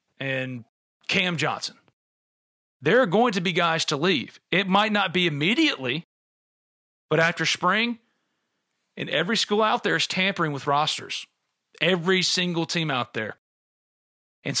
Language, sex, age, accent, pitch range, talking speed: English, male, 40-59, American, 155-205 Hz, 140 wpm